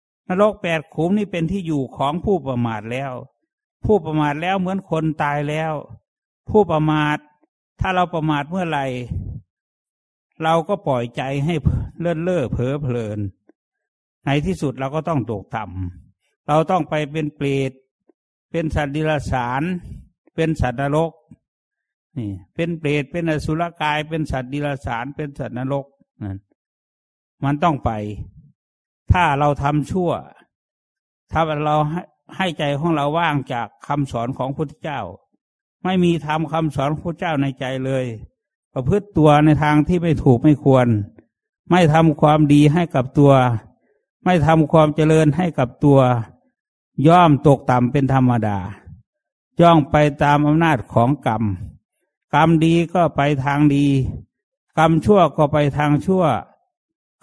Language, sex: English, male